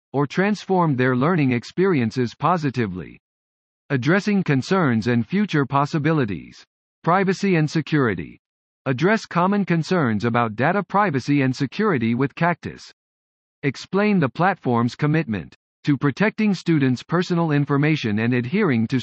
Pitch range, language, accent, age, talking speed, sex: 120-175 Hz, English, American, 50-69, 115 wpm, male